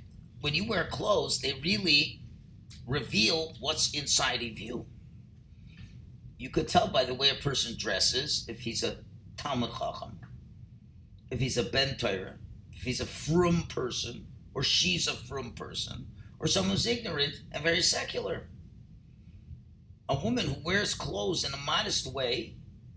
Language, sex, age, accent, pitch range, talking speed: English, male, 50-69, American, 115-145 Hz, 145 wpm